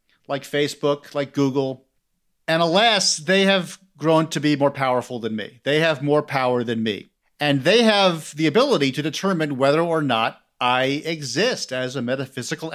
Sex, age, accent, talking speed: male, 50-69, American, 170 wpm